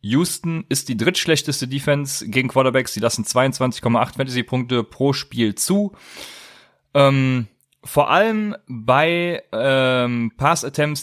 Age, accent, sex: 30-49, German, male